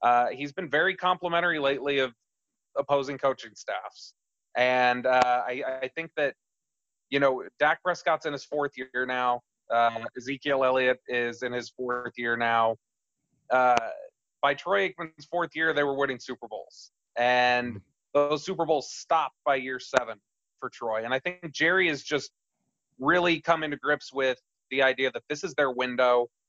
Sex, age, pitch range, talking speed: male, 30-49, 125-150 Hz, 165 wpm